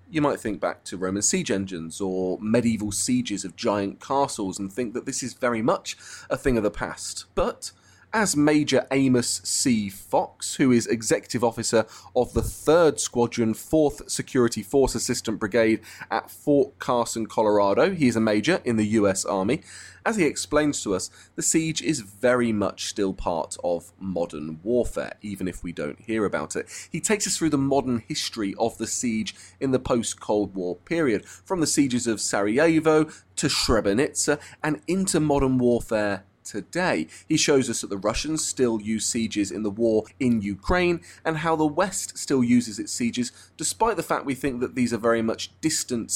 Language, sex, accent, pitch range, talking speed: English, male, British, 100-140 Hz, 180 wpm